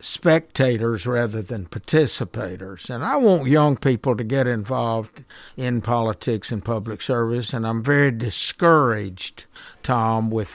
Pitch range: 110-135 Hz